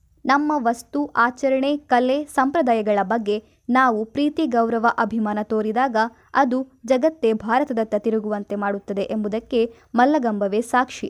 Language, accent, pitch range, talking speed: Kannada, native, 200-260 Hz, 105 wpm